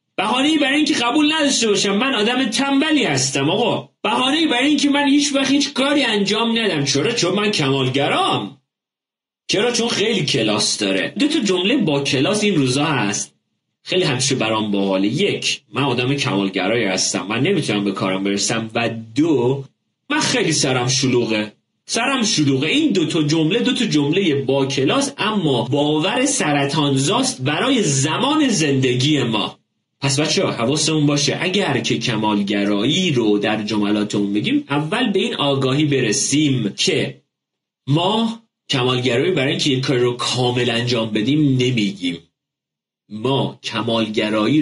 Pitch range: 125-200 Hz